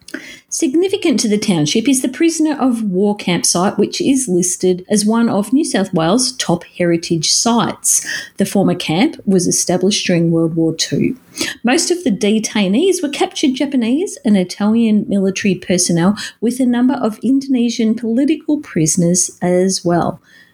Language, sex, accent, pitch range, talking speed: English, female, Australian, 180-255 Hz, 150 wpm